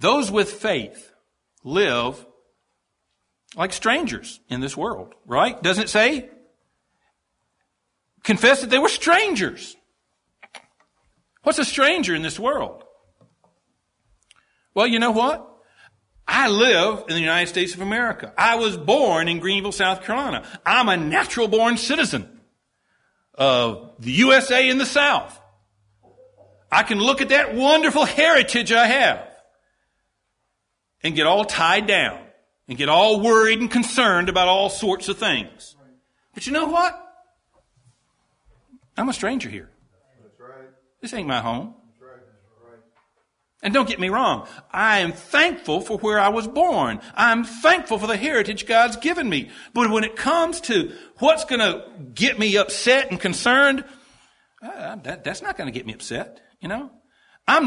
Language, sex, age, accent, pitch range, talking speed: English, male, 60-79, American, 185-275 Hz, 140 wpm